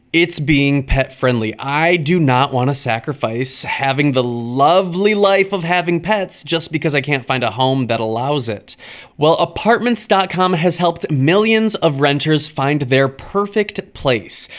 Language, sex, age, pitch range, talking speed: English, male, 20-39, 135-185 Hz, 150 wpm